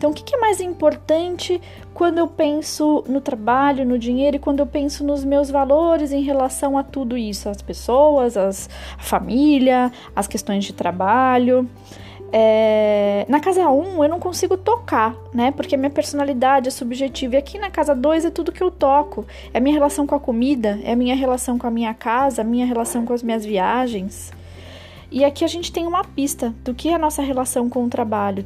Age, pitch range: 20-39, 215-280 Hz